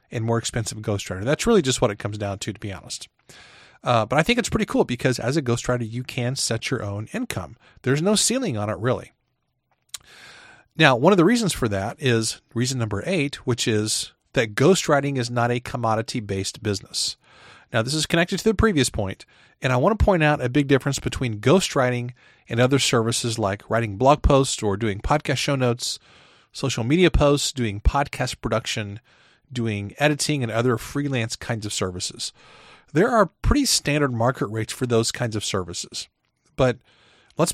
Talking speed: 185 wpm